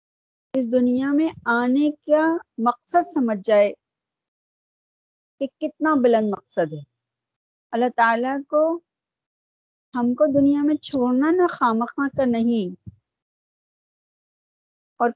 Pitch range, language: 195-270 Hz, Urdu